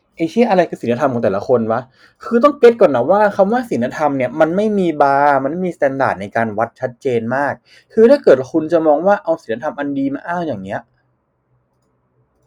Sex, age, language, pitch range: male, 20-39, Thai, 135-205 Hz